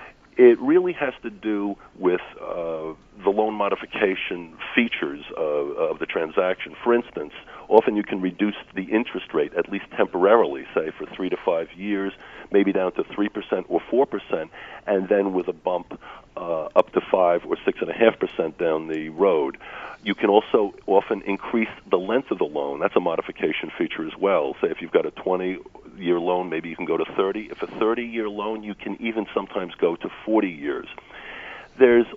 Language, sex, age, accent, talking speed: English, male, 50-69, American, 195 wpm